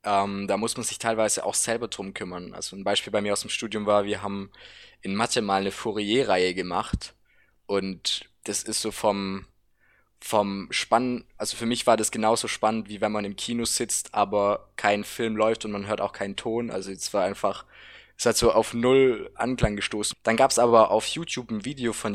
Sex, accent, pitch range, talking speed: male, German, 100-115 Hz, 210 wpm